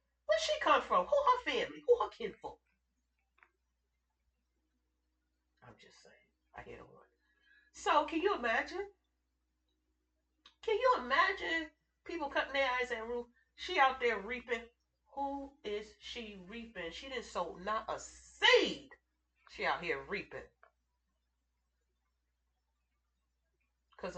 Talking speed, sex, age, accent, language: 125 wpm, female, 40-59, American, English